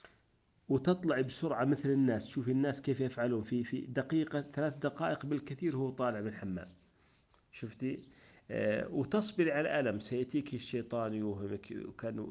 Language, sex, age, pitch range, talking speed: Arabic, male, 40-59, 105-130 Hz, 125 wpm